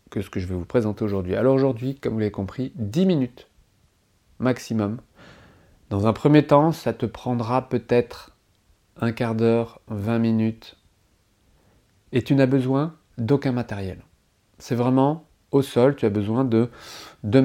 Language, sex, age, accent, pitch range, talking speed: French, male, 30-49, French, 105-130 Hz, 155 wpm